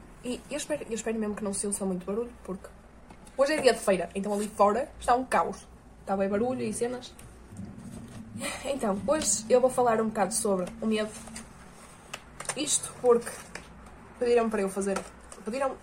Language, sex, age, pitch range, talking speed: Portuguese, female, 20-39, 200-235 Hz, 170 wpm